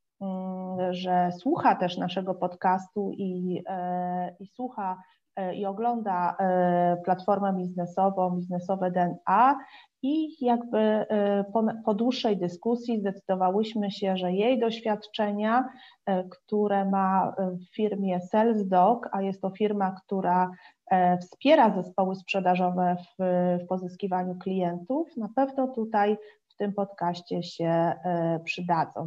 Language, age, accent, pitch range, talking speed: Polish, 30-49, native, 185-215 Hz, 105 wpm